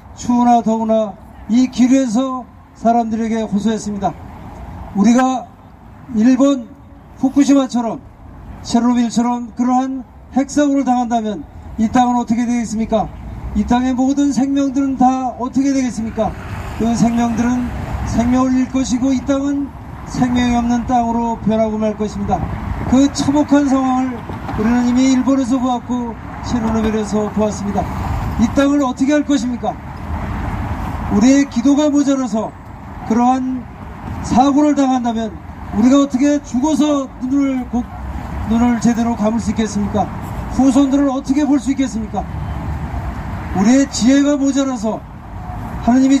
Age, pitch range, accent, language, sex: 40-59, 225-270 Hz, native, Korean, male